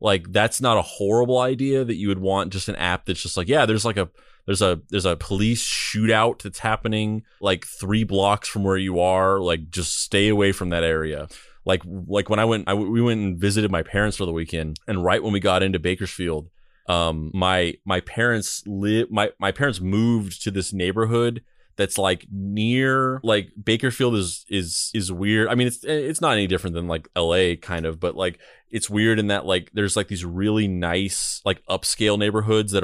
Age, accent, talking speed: 20-39, American, 205 wpm